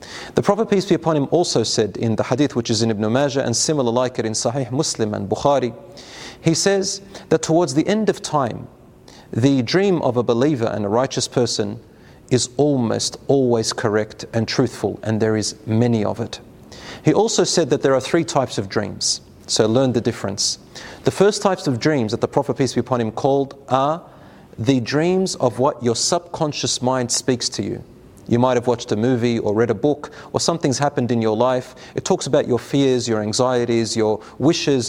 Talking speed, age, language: 200 wpm, 30-49, English